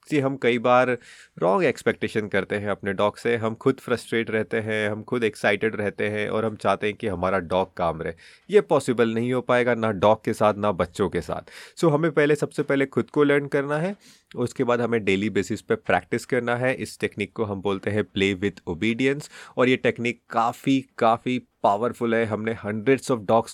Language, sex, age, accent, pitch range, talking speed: Hindi, male, 30-49, native, 110-140 Hz, 210 wpm